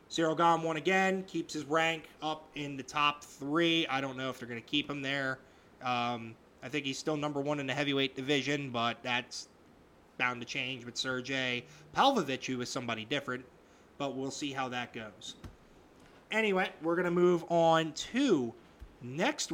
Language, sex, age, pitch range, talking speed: English, male, 30-49, 130-165 Hz, 180 wpm